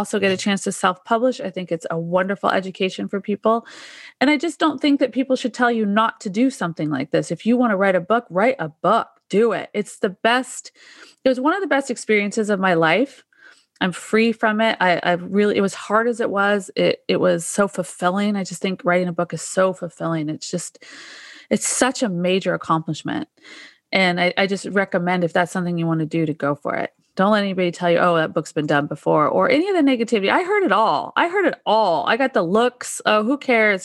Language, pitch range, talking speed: English, 180-245 Hz, 240 wpm